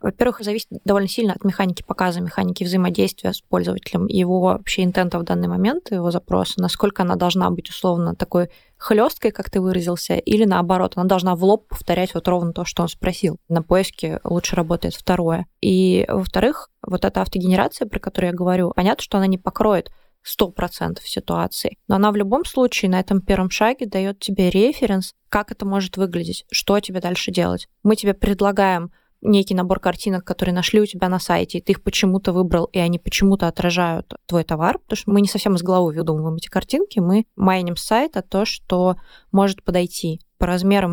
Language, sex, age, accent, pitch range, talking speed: Russian, female, 20-39, native, 180-205 Hz, 185 wpm